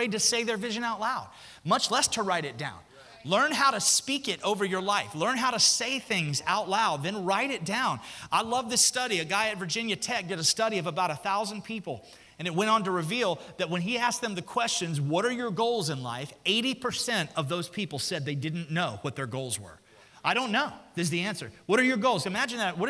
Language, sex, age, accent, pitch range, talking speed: English, male, 30-49, American, 165-240 Hz, 245 wpm